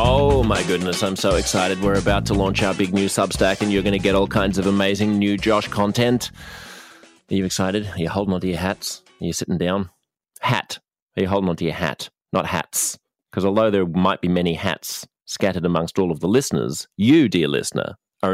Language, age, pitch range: English, 30-49, 85-105 Hz